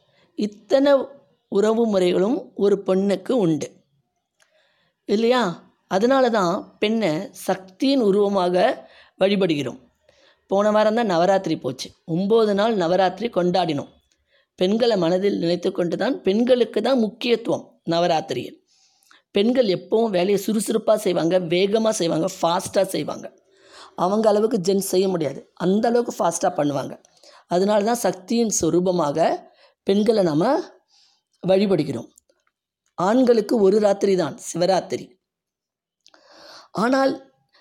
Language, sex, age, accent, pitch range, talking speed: Tamil, female, 20-39, native, 185-235 Hz, 95 wpm